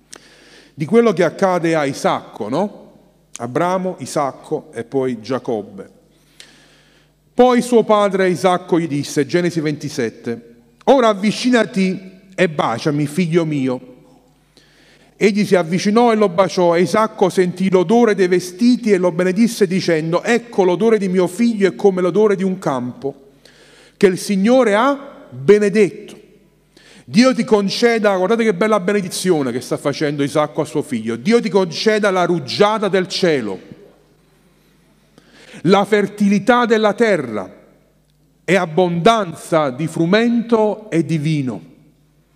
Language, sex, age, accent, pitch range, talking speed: Italian, male, 40-59, native, 165-215 Hz, 130 wpm